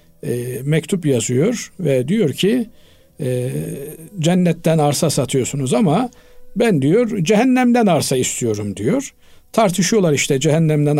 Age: 50-69